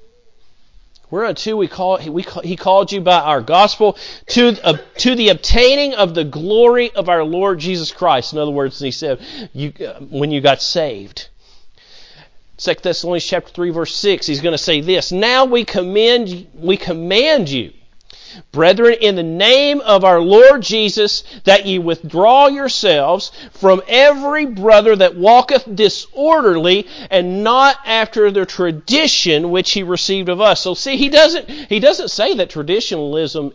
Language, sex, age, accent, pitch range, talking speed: English, male, 50-69, American, 175-250 Hz, 155 wpm